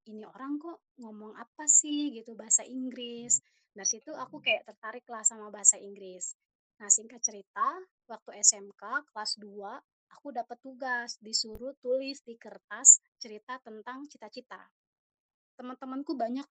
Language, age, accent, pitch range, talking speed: English, 20-39, Indonesian, 210-270 Hz, 135 wpm